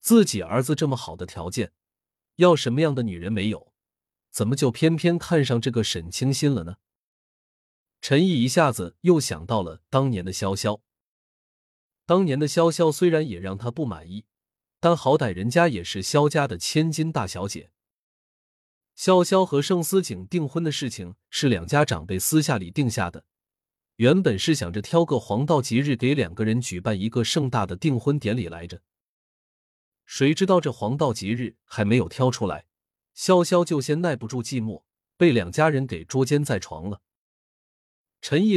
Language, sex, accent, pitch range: Chinese, male, native, 105-155 Hz